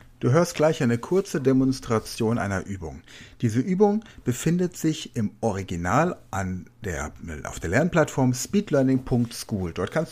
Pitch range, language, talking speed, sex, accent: 105-145 Hz, German, 120 wpm, male, German